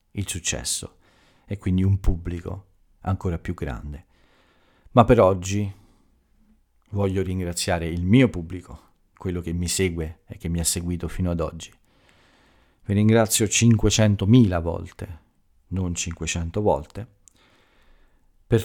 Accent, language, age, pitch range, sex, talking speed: native, Italian, 40-59, 85-100 Hz, male, 120 wpm